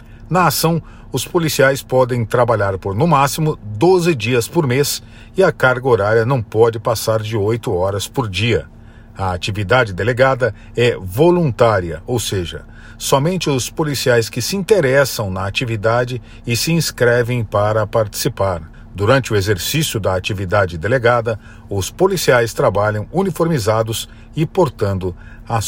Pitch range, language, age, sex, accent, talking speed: 105-140 Hz, Portuguese, 50-69, male, Brazilian, 135 wpm